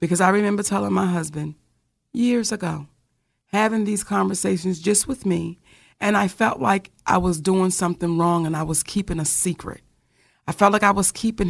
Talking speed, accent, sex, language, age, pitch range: 185 wpm, American, female, English, 40-59, 185-250 Hz